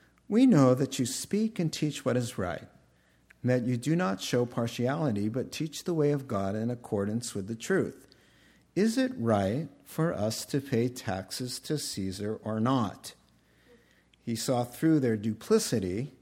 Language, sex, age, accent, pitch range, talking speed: English, male, 50-69, American, 110-145 Hz, 165 wpm